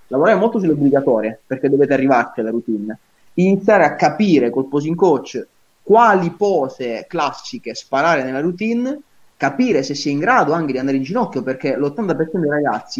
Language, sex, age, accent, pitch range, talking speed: Italian, male, 20-39, native, 135-175 Hz, 160 wpm